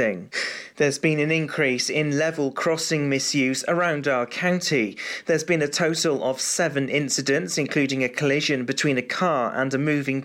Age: 40-59